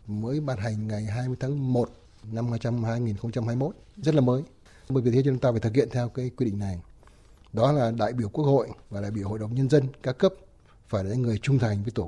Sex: male